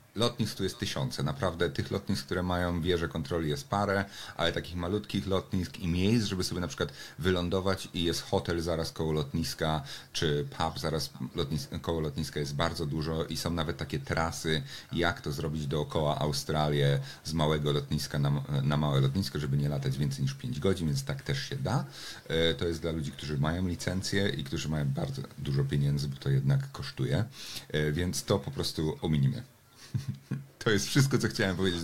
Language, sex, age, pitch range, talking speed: Polish, male, 40-59, 75-105 Hz, 180 wpm